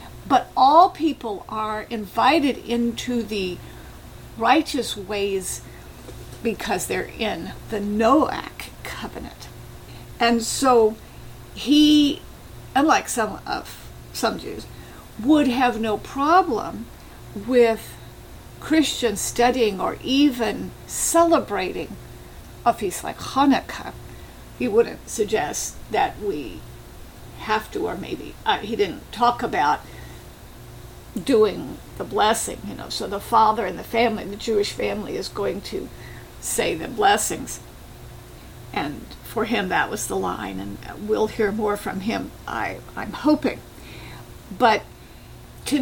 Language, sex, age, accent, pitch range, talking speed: English, female, 50-69, American, 215-280 Hz, 115 wpm